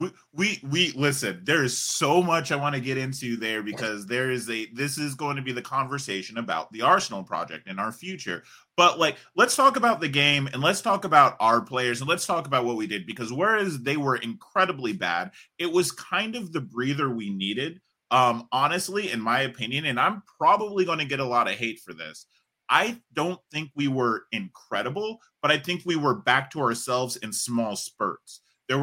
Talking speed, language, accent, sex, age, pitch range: 210 wpm, English, American, male, 30-49, 115-165 Hz